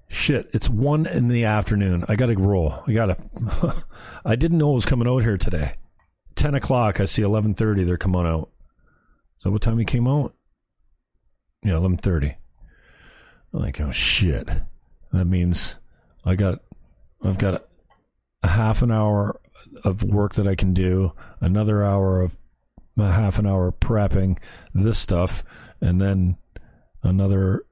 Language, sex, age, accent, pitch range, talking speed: English, male, 40-59, American, 90-110 Hz, 155 wpm